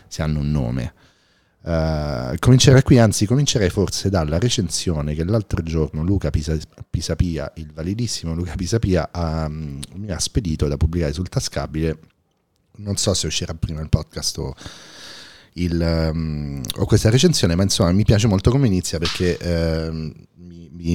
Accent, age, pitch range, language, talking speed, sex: native, 30-49, 80-105 Hz, Italian, 150 wpm, male